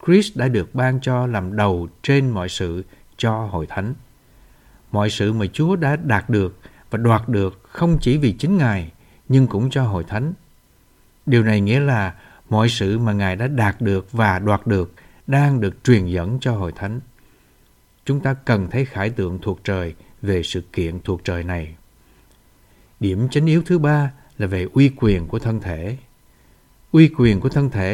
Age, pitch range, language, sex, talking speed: 60-79, 95-130 Hz, Vietnamese, male, 185 wpm